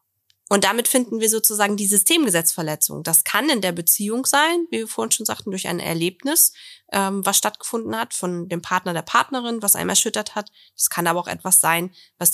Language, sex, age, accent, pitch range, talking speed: German, female, 20-39, German, 175-215 Hz, 195 wpm